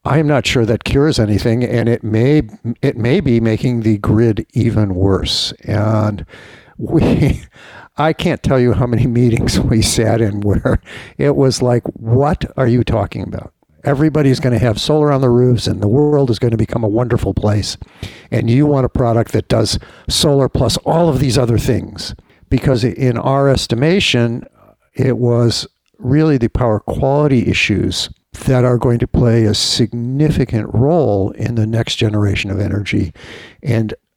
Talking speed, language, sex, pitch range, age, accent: 165 wpm, English, male, 110-130 Hz, 60-79, American